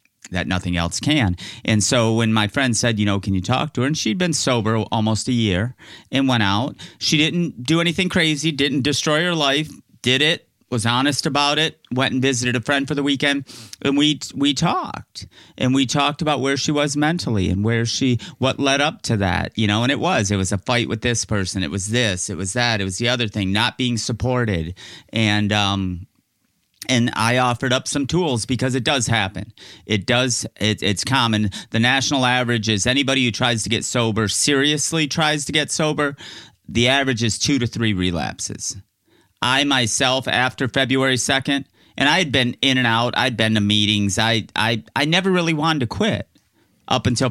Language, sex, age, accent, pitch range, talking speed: English, male, 30-49, American, 105-140 Hz, 205 wpm